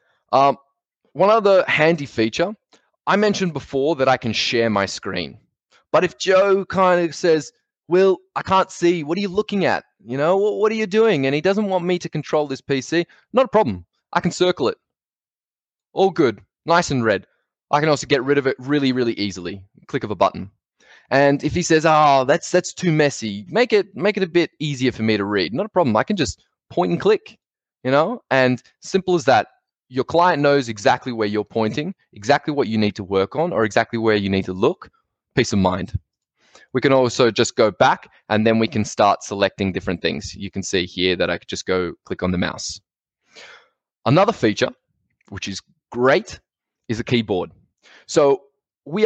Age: 20-39